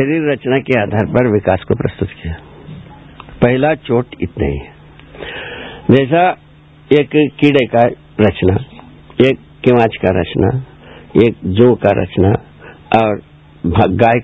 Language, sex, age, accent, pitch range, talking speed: Hindi, male, 60-79, native, 105-165 Hz, 120 wpm